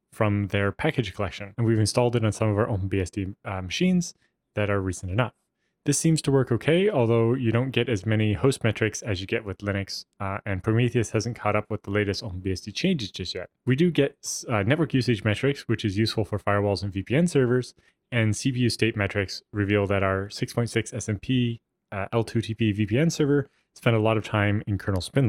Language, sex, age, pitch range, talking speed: English, male, 20-39, 100-125 Hz, 205 wpm